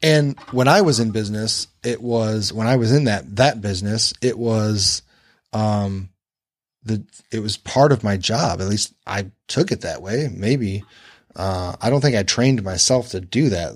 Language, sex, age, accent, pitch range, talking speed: English, male, 30-49, American, 100-130 Hz, 190 wpm